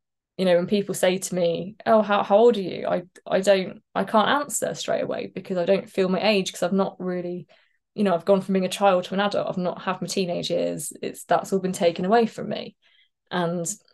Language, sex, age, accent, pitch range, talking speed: English, female, 20-39, British, 170-205 Hz, 245 wpm